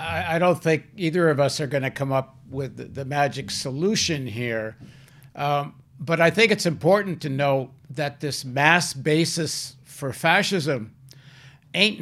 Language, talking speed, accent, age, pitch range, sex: English, 155 wpm, American, 60-79, 135-175 Hz, male